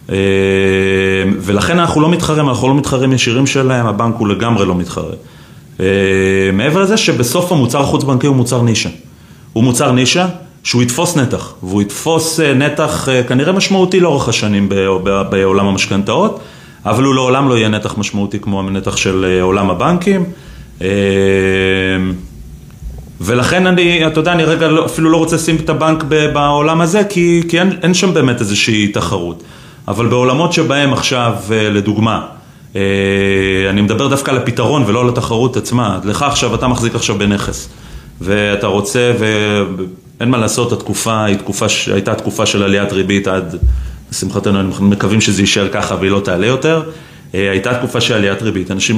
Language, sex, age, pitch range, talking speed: Hebrew, male, 30-49, 100-135 Hz, 160 wpm